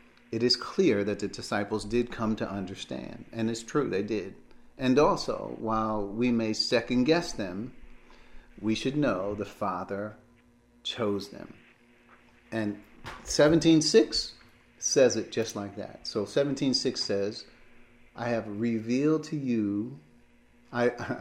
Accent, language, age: American, English, 40-59